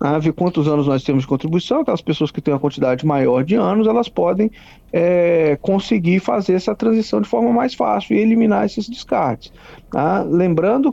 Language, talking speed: Portuguese, 170 wpm